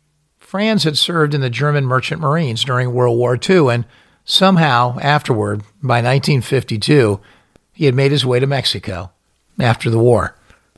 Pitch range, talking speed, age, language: 115-155 Hz, 150 wpm, 50-69, English